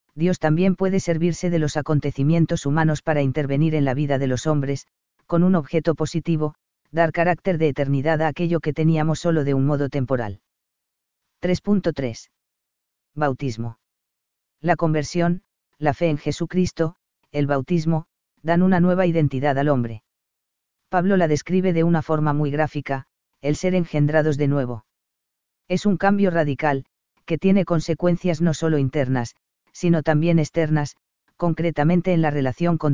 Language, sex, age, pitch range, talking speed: Spanish, female, 40-59, 140-170 Hz, 145 wpm